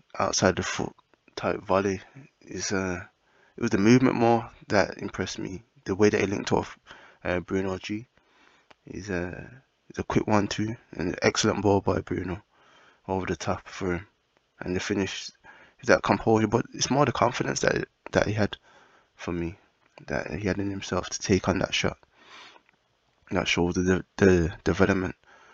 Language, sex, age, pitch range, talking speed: English, male, 20-39, 90-105 Hz, 180 wpm